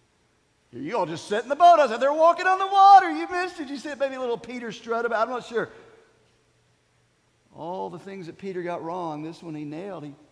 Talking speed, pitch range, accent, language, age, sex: 235 wpm, 115-155 Hz, American, English, 50-69, male